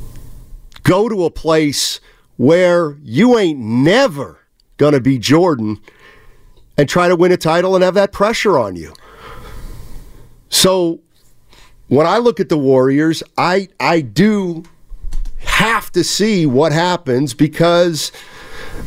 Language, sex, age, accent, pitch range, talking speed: English, male, 50-69, American, 155-230 Hz, 125 wpm